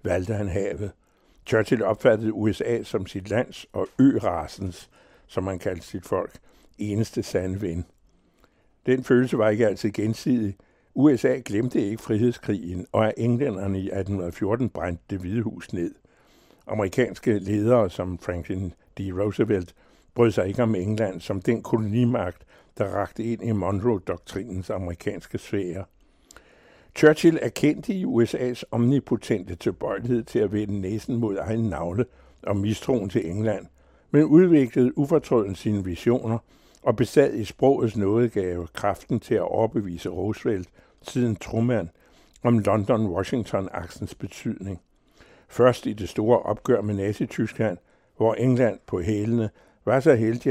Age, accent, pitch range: 60-79, American, 95-120 Hz